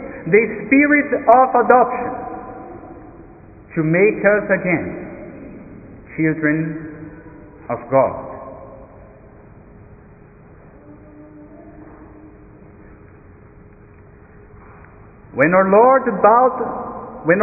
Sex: male